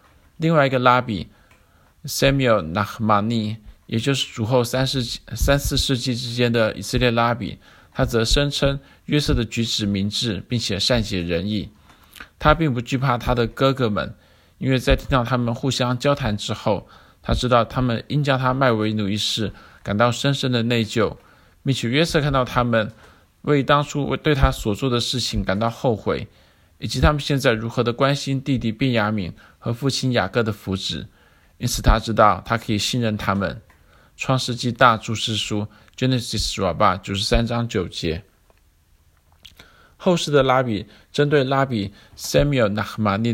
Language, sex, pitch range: Chinese, male, 105-130 Hz